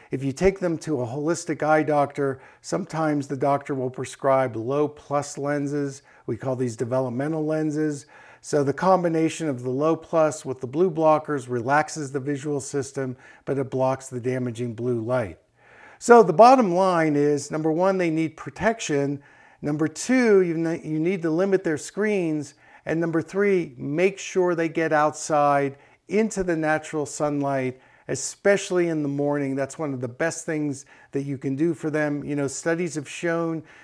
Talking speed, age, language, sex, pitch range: 170 wpm, 50-69, English, male, 140-170 Hz